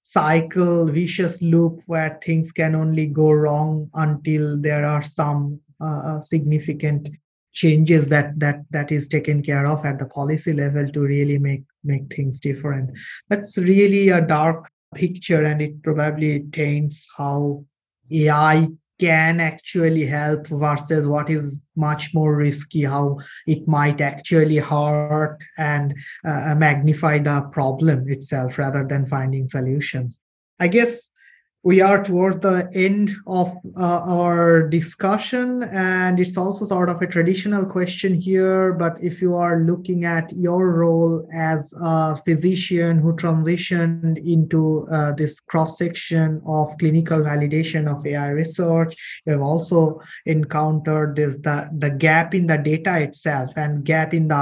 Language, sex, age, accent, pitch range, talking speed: English, male, 20-39, Indian, 150-170 Hz, 140 wpm